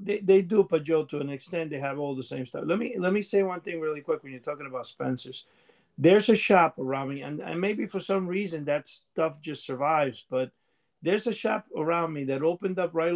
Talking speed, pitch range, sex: 235 wpm, 150-185 Hz, male